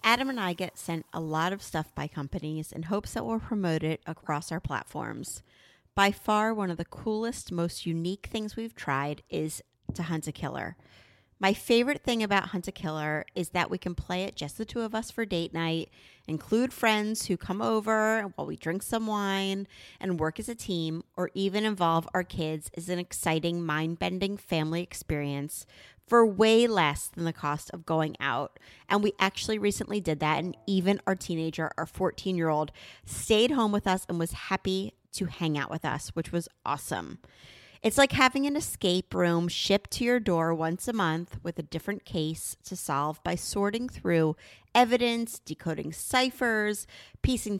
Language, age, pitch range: English, 30-49, 160-215 Hz